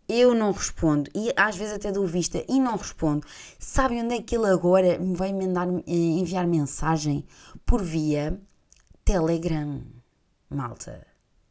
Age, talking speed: 20-39, 135 wpm